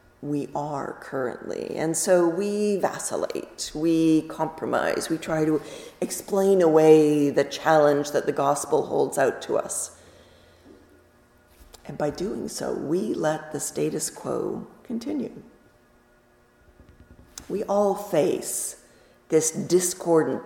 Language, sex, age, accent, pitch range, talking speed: English, female, 50-69, American, 140-190 Hz, 110 wpm